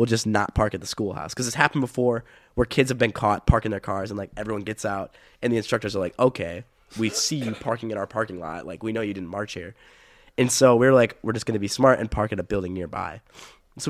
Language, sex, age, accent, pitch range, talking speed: English, male, 20-39, American, 95-125 Hz, 270 wpm